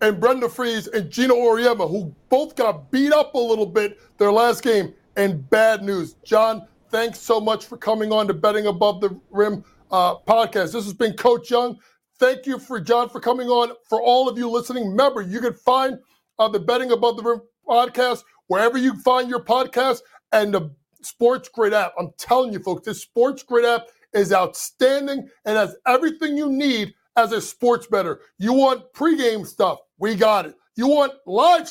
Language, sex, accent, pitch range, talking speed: English, male, American, 210-250 Hz, 190 wpm